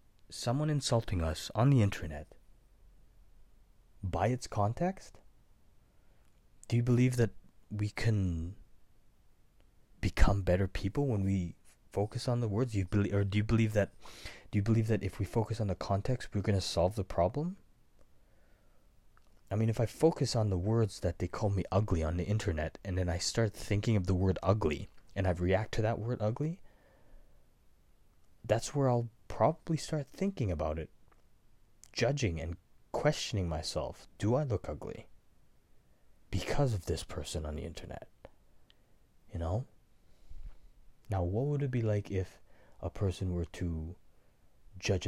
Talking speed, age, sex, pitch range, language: 155 wpm, 20-39, male, 85-110 Hz, English